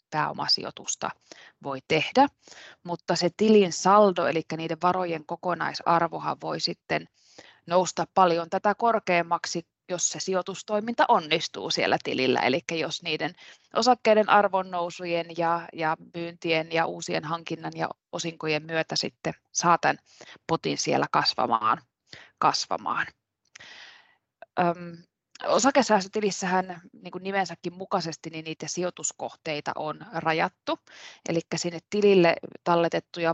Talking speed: 100 wpm